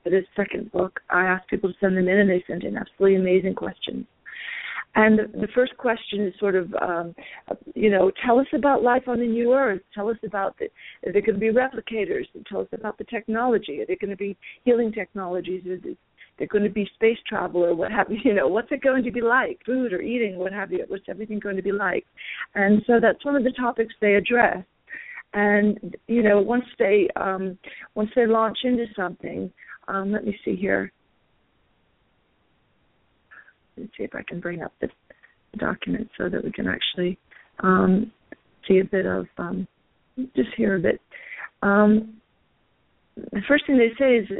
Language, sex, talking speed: English, female, 200 wpm